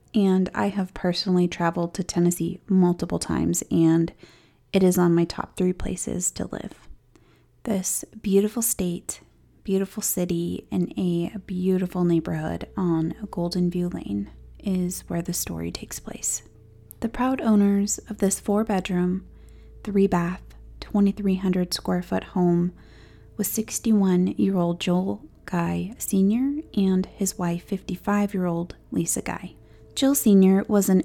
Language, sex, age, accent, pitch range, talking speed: English, female, 30-49, American, 175-205 Hz, 120 wpm